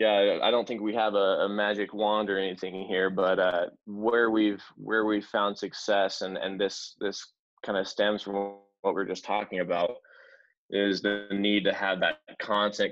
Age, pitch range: 20-39, 95-105 Hz